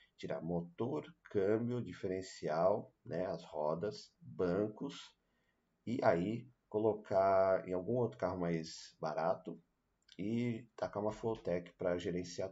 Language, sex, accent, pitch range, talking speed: Portuguese, male, Brazilian, 85-105 Hz, 110 wpm